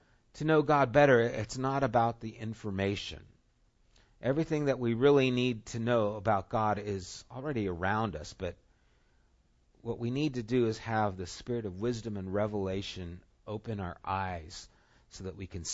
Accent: American